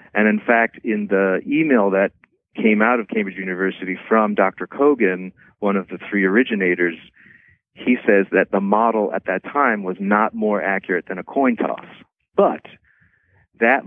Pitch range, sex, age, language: 95-115 Hz, male, 40-59, English